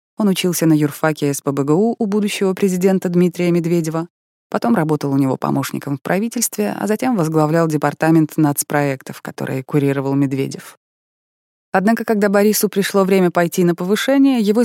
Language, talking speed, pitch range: Russian, 140 wpm, 150-190 Hz